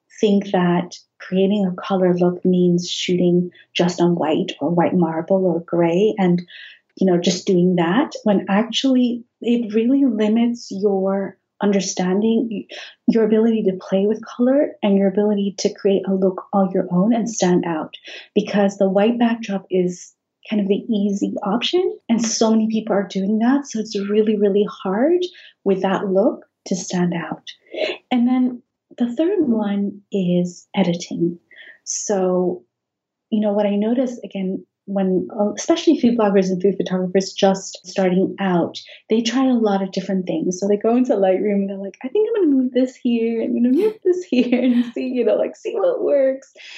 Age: 30-49